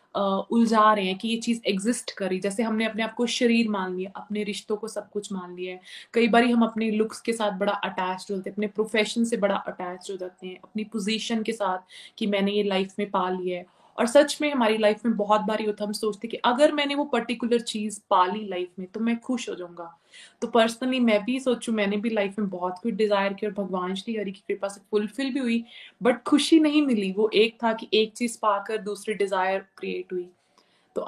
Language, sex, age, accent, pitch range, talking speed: Hindi, female, 20-39, native, 195-230 Hz, 235 wpm